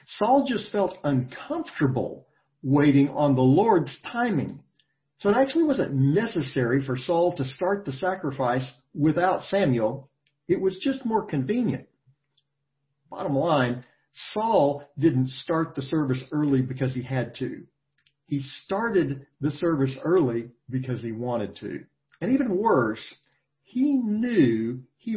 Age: 50-69